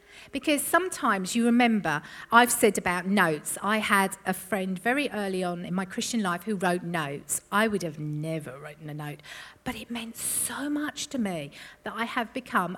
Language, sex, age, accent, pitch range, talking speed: English, female, 50-69, British, 175-250 Hz, 190 wpm